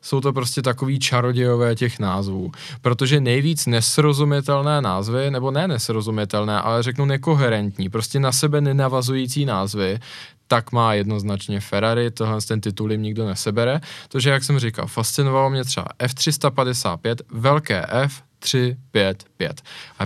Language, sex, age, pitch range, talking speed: Czech, male, 20-39, 110-140 Hz, 125 wpm